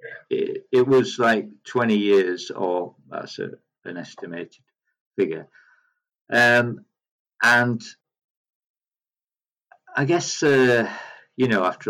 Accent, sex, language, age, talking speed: British, male, English, 50-69, 100 wpm